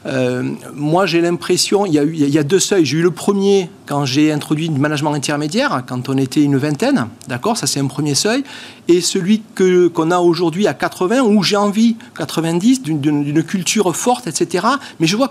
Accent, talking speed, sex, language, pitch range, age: French, 210 wpm, male, French, 155-210 Hz, 40-59